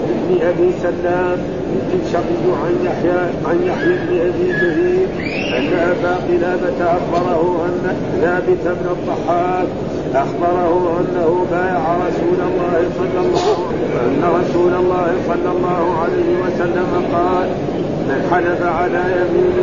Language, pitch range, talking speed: Arabic, 175-180 Hz, 120 wpm